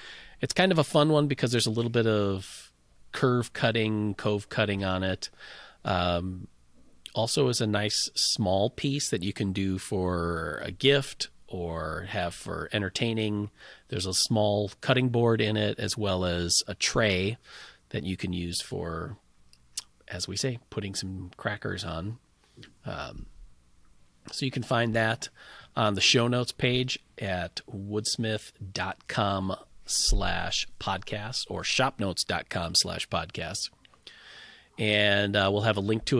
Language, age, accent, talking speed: English, 40-59, American, 145 wpm